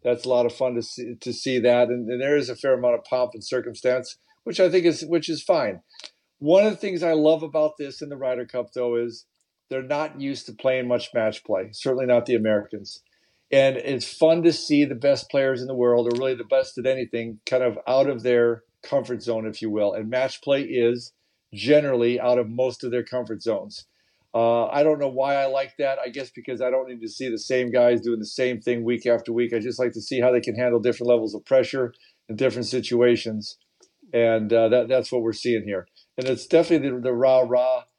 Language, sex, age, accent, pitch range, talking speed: English, male, 50-69, American, 120-135 Hz, 230 wpm